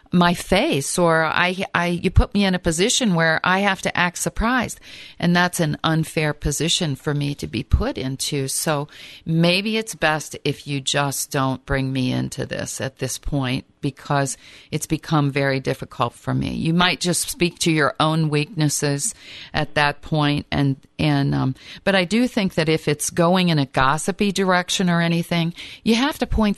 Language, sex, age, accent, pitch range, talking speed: English, female, 50-69, American, 145-180 Hz, 185 wpm